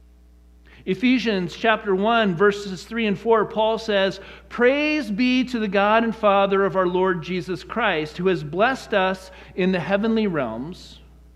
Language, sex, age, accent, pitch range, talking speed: English, male, 50-69, American, 170-225 Hz, 155 wpm